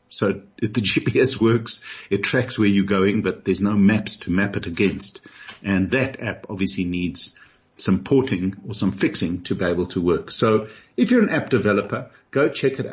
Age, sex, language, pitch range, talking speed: 50-69, male, English, 95-125 Hz, 195 wpm